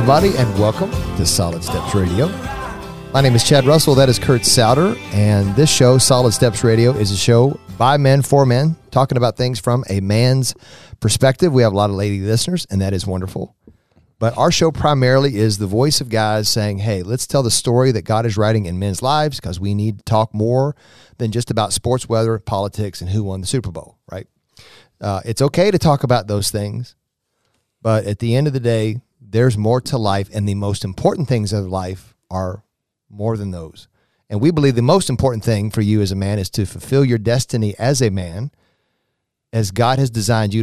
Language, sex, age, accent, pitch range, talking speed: English, male, 40-59, American, 100-130 Hz, 210 wpm